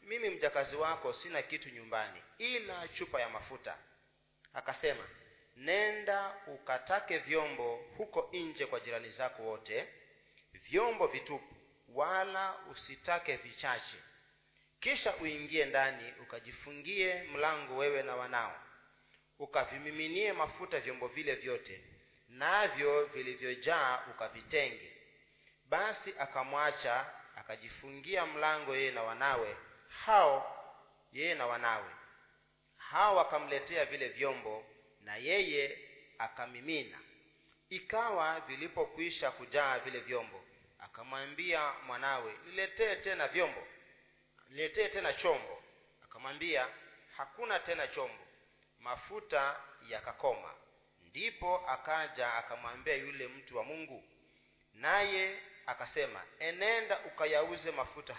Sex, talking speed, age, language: male, 95 wpm, 40-59, Swahili